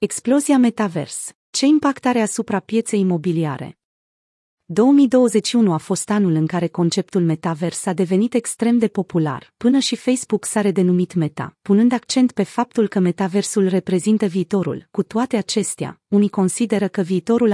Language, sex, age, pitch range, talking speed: Romanian, female, 30-49, 175-225 Hz, 145 wpm